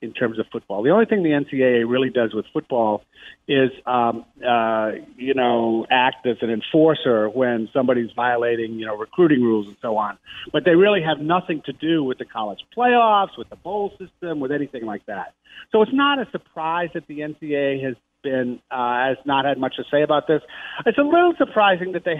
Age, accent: 50-69, American